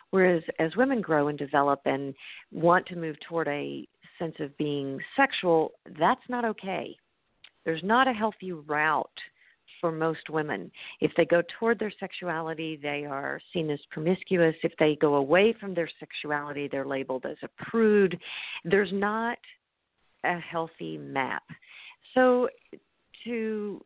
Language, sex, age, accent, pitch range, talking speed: English, female, 50-69, American, 155-210 Hz, 145 wpm